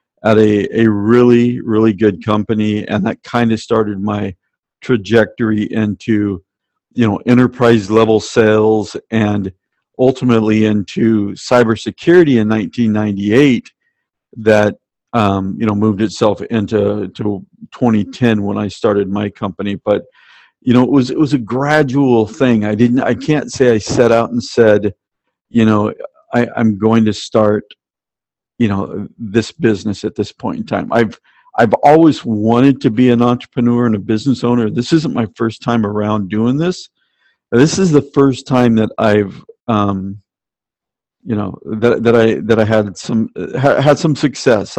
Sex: male